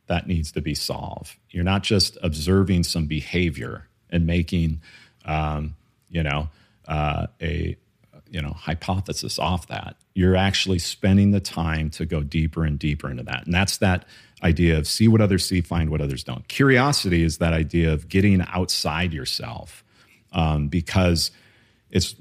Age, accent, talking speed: 40-59, American, 160 wpm